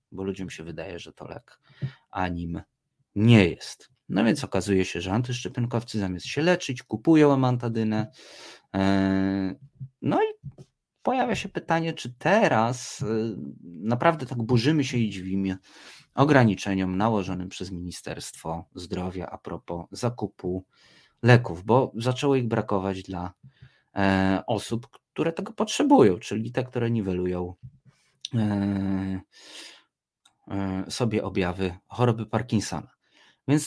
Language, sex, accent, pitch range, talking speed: Polish, male, native, 95-135 Hz, 110 wpm